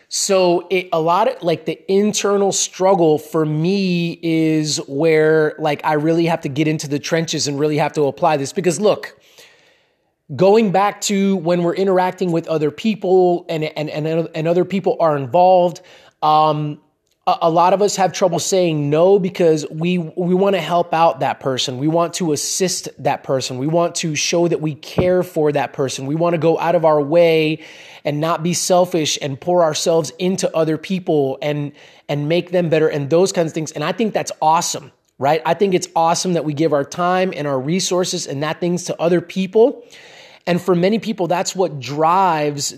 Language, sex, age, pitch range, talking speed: English, male, 20-39, 155-185 Hz, 195 wpm